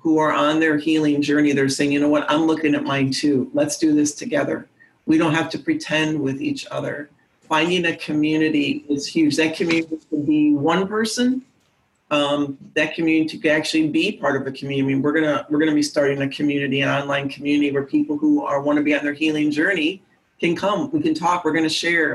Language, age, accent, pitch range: English, 40-59, American, 145-160 Hz